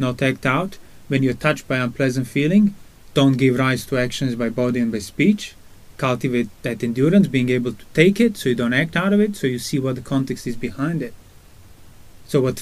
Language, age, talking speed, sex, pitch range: English, 30-49, 215 wpm, male, 120-155 Hz